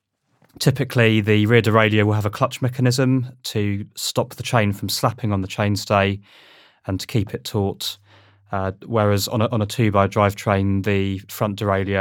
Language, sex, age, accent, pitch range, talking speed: English, male, 20-39, British, 100-115 Hz, 170 wpm